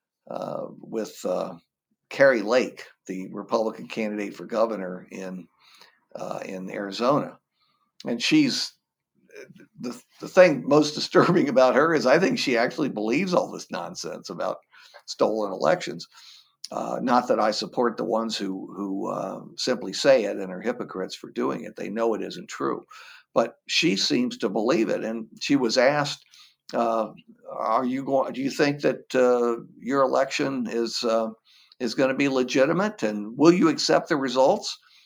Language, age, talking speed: English, 60-79, 160 wpm